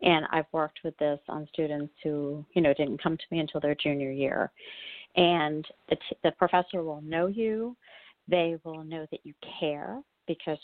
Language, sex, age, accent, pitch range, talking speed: English, female, 40-59, American, 155-195 Hz, 185 wpm